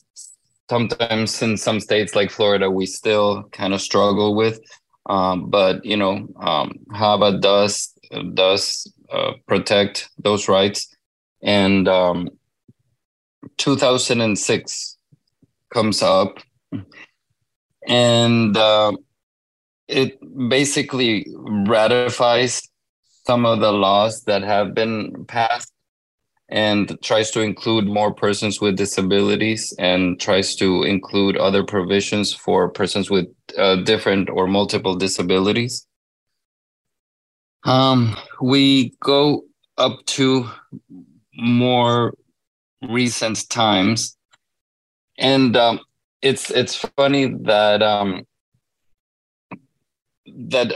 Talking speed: 95 wpm